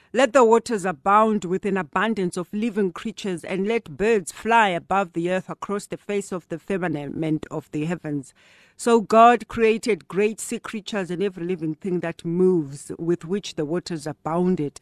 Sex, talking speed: female, 175 wpm